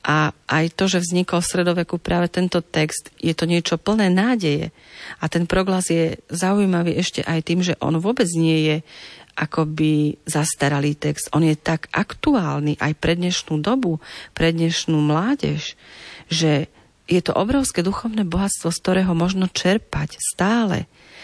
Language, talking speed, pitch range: Slovak, 150 wpm, 160-180 Hz